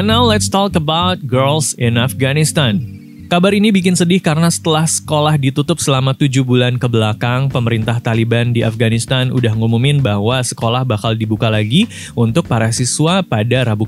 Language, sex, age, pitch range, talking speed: Indonesian, male, 20-39, 120-155 Hz, 155 wpm